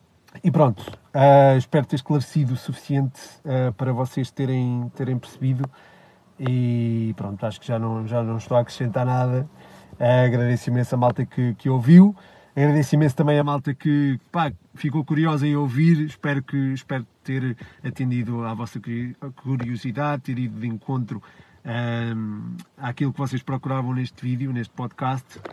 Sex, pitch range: male, 115-140 Hz